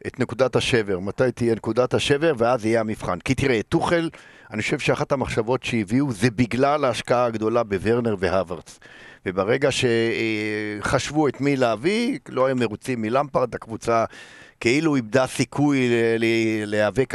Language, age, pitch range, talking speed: Hebrew, 50-69, 120-165 Hz, 135 wpm